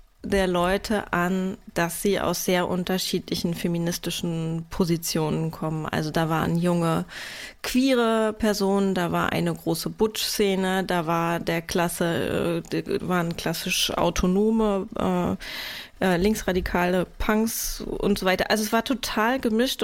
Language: German